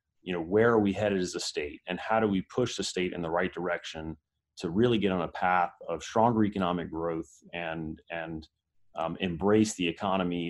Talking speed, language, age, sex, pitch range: 205 wpm, English, 30-49, male, 85-110 Hz